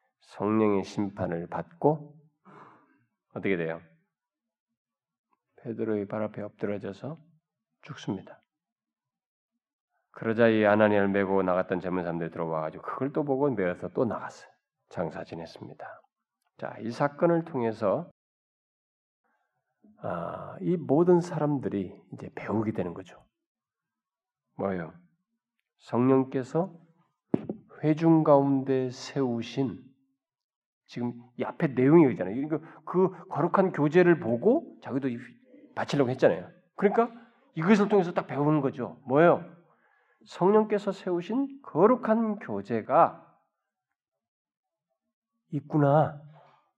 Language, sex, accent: Korean, male, native